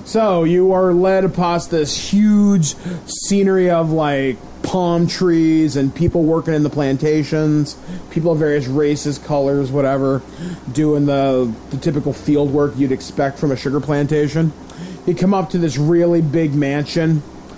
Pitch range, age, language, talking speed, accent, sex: 145-175 Hz, 30-49, English, 150 wpm, American, male